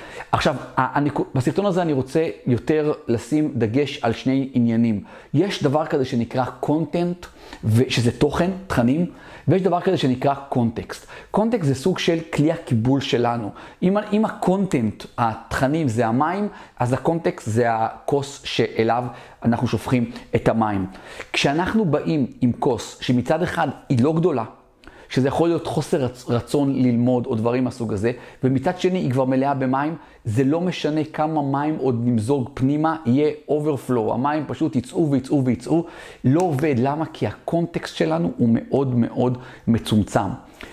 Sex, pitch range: male, 125-155 Hz